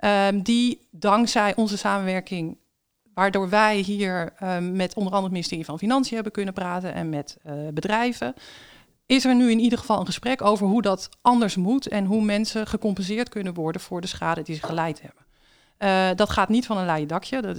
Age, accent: 50-69, Dutch